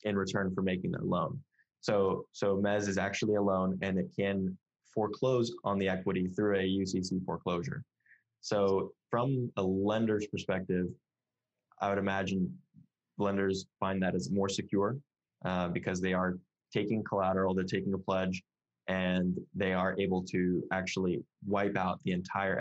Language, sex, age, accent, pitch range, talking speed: English, male, 20-39, American, 95-100 Hz, 155 wpm